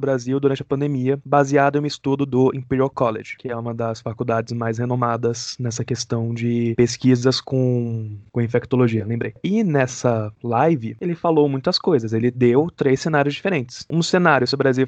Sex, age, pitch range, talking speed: male, 20-39, 120-155 Hz, 175 wpm